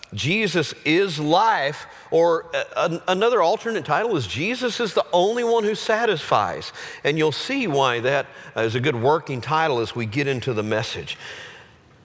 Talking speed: 155 wpm